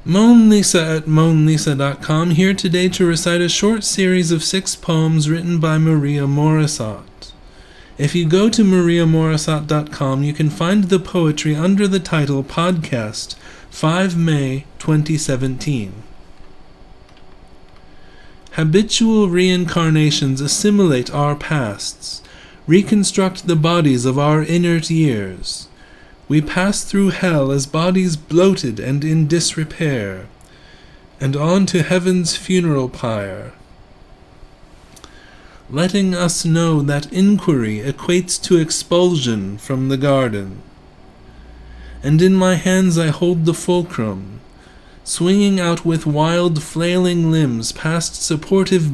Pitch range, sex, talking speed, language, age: 135-180 Hz, male, 110 wpm, English, 30-49